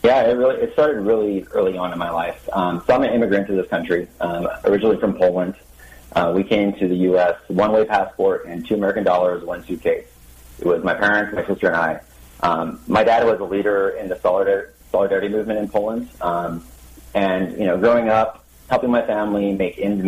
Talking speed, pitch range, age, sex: 205 wpm, 90-120 Hz, 30-49, male